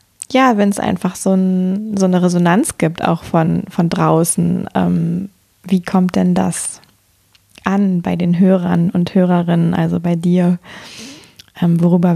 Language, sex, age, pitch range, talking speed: German, female, 20-39, 180-215 Hz, 140 wpm